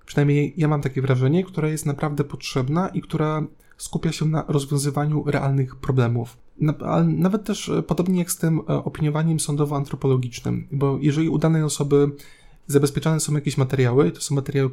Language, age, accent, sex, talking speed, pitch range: Polish, 20-39, native, male, 150 wpm, 130-150 Hz